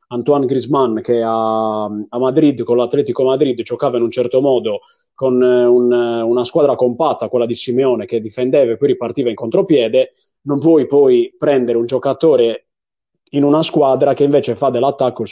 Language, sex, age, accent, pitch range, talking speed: Italian, male, 30-49, native, 125-155 Hz, 160 wpm